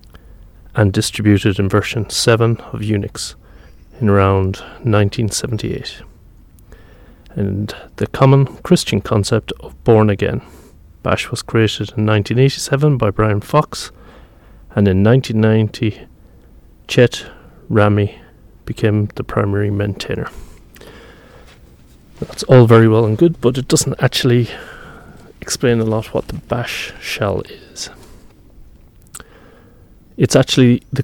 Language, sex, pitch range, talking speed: English, male, 100-115 Hz, 110 wpm